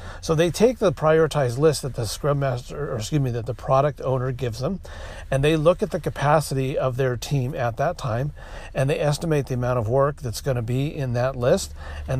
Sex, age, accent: male, 40-59, American